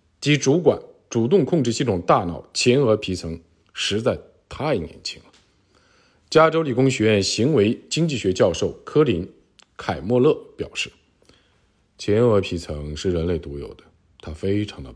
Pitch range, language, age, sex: 85-125 Hz, Chinese, 50-69, male